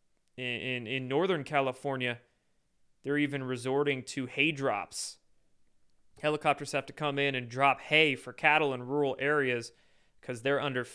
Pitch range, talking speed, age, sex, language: 130-155 Hz, 145 wpm, 20-39, male, English